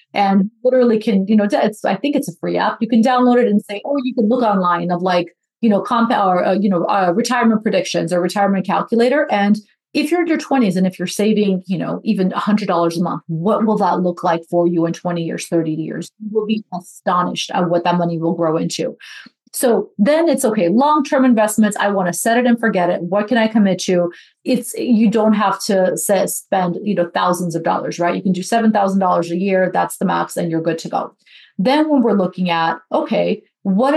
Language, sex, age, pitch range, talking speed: English, female, 30-49, 180-235 Hz, 235 wpm